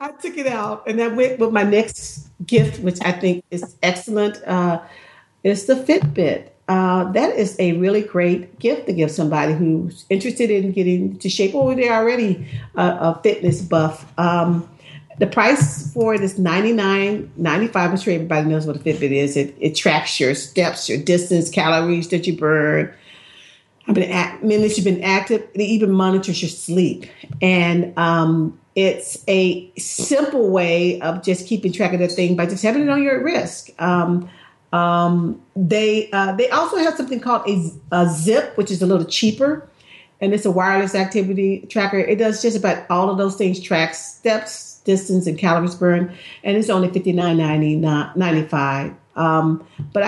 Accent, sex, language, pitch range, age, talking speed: American, female, English, 170-210 Hz, 50-69, 175 wpm